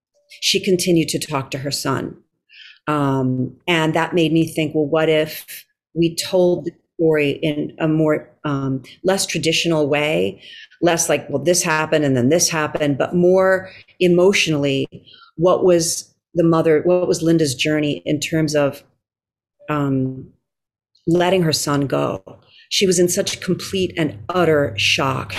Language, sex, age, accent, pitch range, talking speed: English, female, 40-59, American, 140-170 Hz, 150 wpm